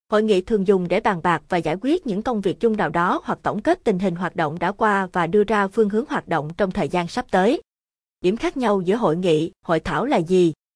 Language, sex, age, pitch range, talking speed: Vietnamese, female, 20-39, 170-220 Hz, 260 wpm